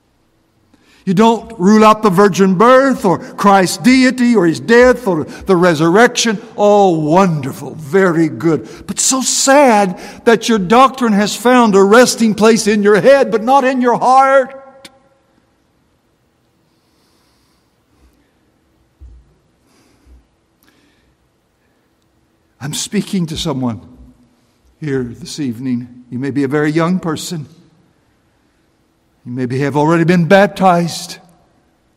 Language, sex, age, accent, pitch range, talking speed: English, male, 60-79, American, 135-200 Hz, 110 wpm